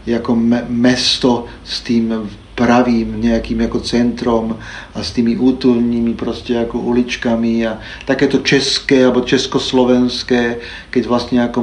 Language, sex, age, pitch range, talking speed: Czech, male, 40-59, 115-125 Hz, 120 wpm